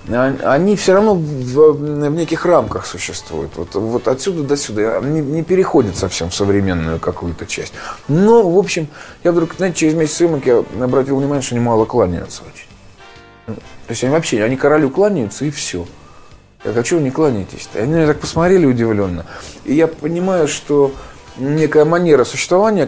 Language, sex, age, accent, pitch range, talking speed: Russian, male, 20-39, native, 110-160 Hz, 175 wpm